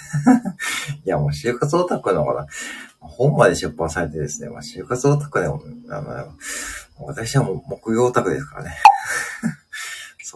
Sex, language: male, Japanese